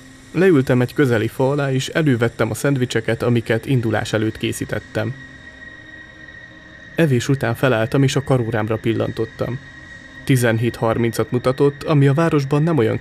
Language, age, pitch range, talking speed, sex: Hungarian, 30-49, 110-135 Hz, 125 wpm, male